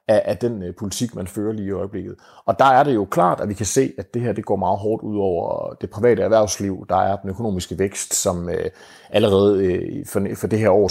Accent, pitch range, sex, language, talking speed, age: native, 95-115 Hz, male, Danish, 225 wpm, 30-49